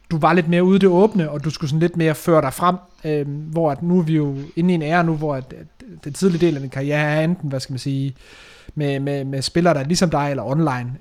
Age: 30-49